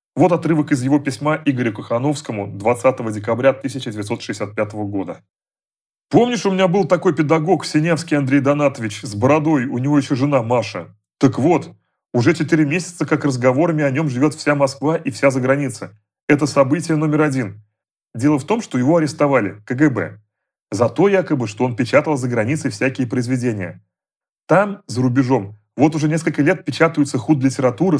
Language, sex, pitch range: Russian, male, 125-160 Hz